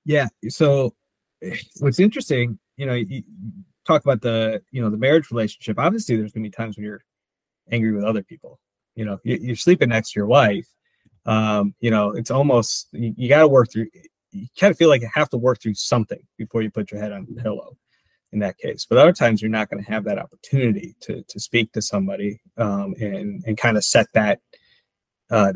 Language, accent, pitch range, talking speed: English, American, 110-135 Hz, 210 wpm